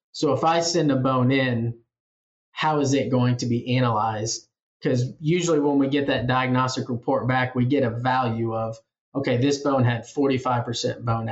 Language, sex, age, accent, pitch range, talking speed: English, male, 20-39, American, 120-135 Hz, 180 wpm